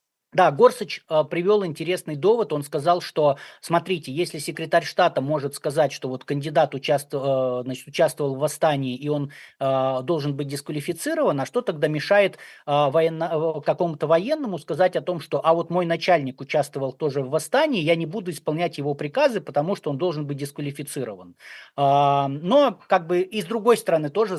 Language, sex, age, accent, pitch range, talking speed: Russian, male, 20-39, native, 145-180 Hz, 155 wpm